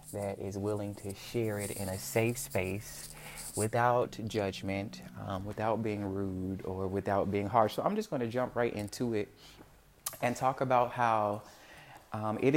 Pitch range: 100-120 Hz